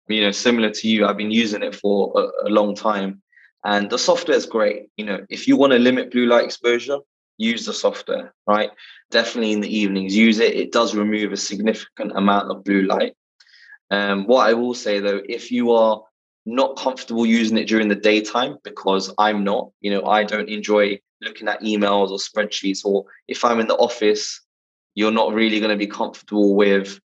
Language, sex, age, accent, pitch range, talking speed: English, male, 20-39, British, 100-115 Hz, 200 wpm